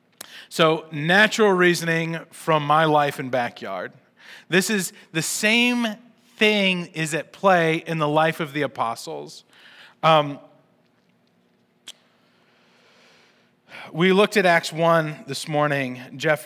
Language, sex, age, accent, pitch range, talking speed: English, male, 30-49, American, 145-195 Hz, 115 wpm